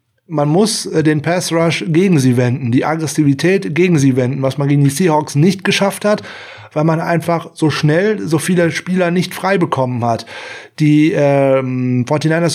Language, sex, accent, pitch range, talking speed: German, male, German, 150-190 Hz, 170 wpm